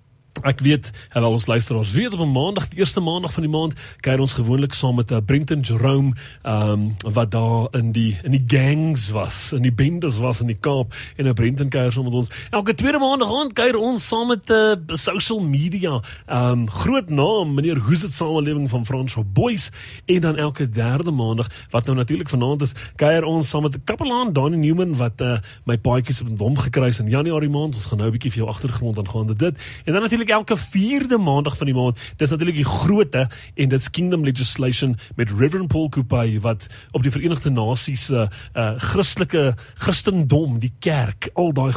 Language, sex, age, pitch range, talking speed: English, male, 30-49, 120-170 Hz, 195 wpm